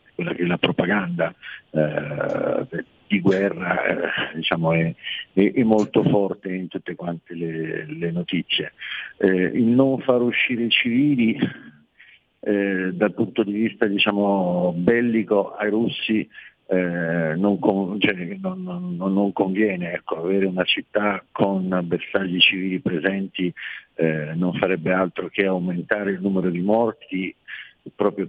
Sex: male